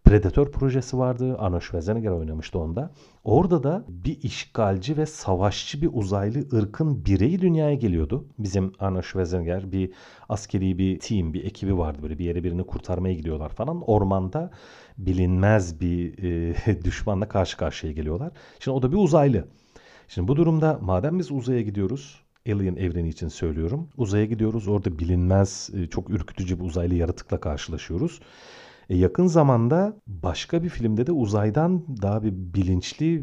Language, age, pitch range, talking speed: Turkish, 40-59, 90-125 Hz, 145 wpm